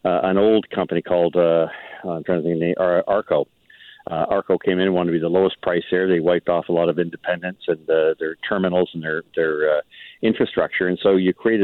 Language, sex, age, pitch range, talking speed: English, male, 50-69, 85-100 Hz, 235 wpm